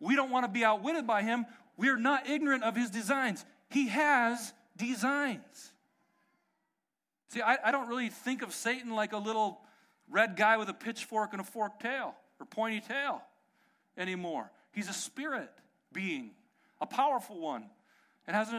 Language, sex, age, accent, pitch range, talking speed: English, male, 40-59, American, 205-260 Hz, 170 wpm